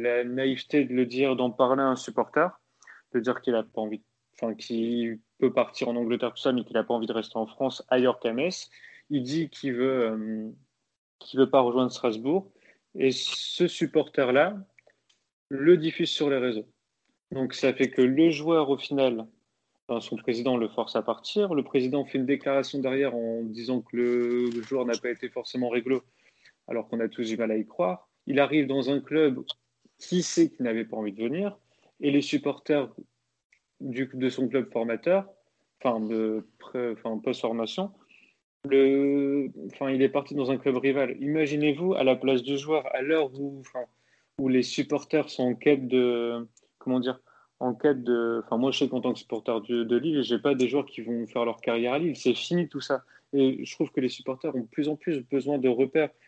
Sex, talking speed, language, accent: male, 205 wpm, French, French